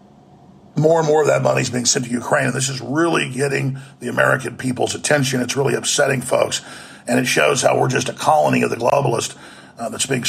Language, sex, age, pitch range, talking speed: English, male, 50-69, 125-155 Hz, 220 wpm